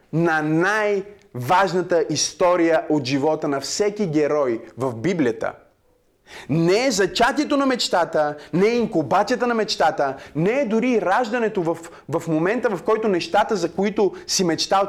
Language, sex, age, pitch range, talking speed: Bulgarian, male, 30-49, 175-240 Hz, 135 wpm